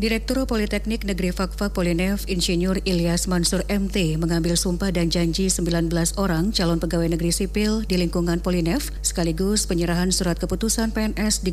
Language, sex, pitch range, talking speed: Indonesian, female, 170-200 Hz, 145 wpm